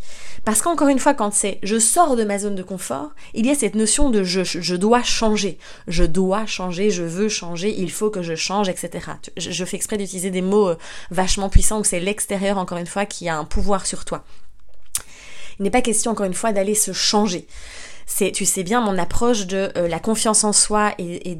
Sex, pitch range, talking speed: female, 185-225 Hz, 240 wpm